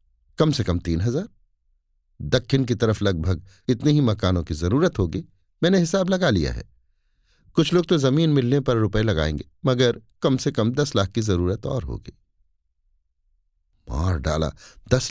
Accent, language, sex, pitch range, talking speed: native, Hindi, male, 85-140 Hz, 165 wpm